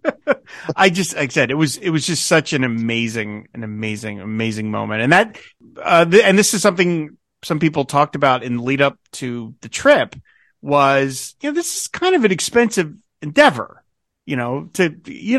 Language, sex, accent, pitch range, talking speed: English, male, American, 125-180 Hz, 195 wpm